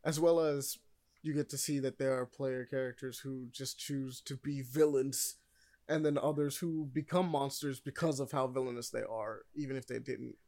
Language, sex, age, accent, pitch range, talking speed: English, male, 20-39, American, 115-145 Hz, 195 wpm